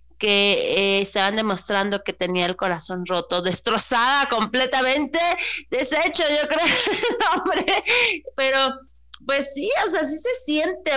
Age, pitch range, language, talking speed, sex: 30-49, 215-310 Hz, Spanish, 125 wpm, female